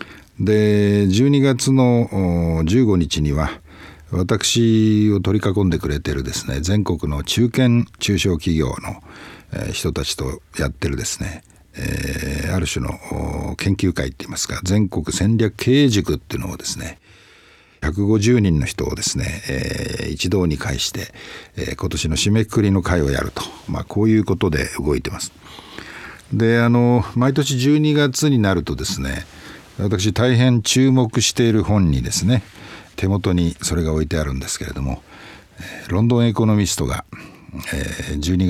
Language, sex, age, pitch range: Japanese, male, 60-79, 85-120 Hz